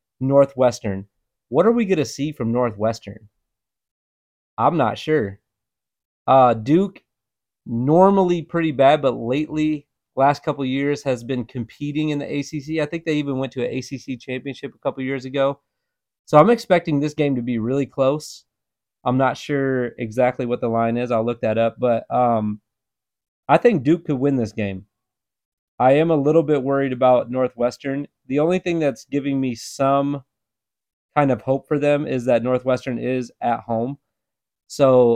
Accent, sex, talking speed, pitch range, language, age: American, male, 165 wpm, 115-140 Hz, English, 30-49